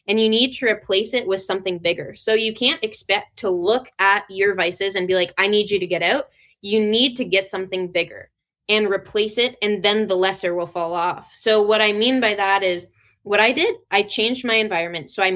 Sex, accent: female, American